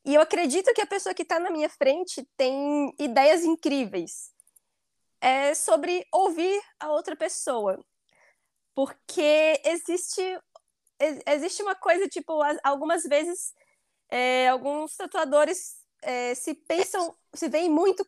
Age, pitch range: 20-39, 270-350 Hz